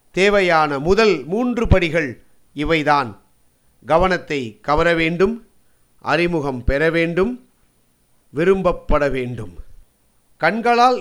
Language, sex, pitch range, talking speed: Tamil, male, 145-190 Hz, 75 wpm